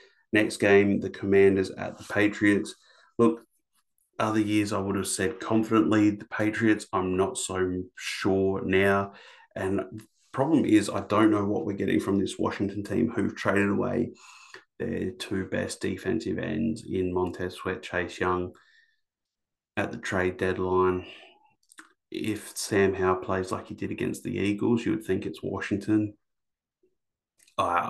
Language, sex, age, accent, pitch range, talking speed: English, male, 30-49, Australian, 90-110 Hz, 145 wpm